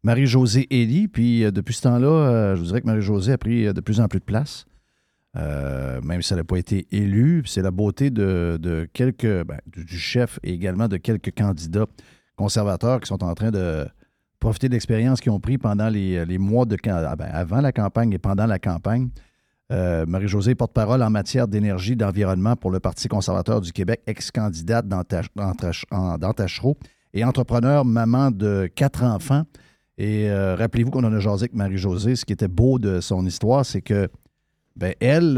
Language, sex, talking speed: French, male, 200 wpm